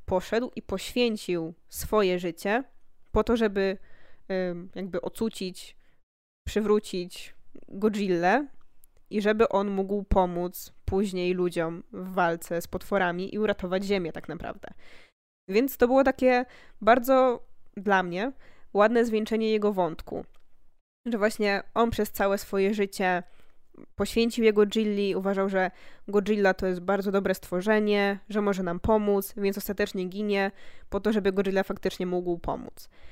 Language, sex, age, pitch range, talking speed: Polish, female, 20-39, 190-225 Hz, 130 wpm